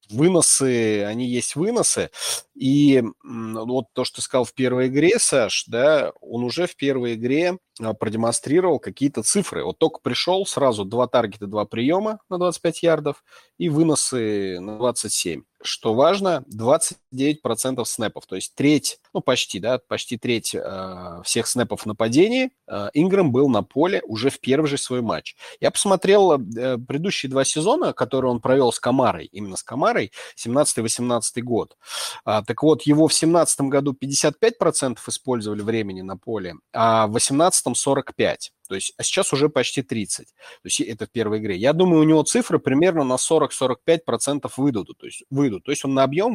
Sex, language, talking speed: male, Russian, 160 wpm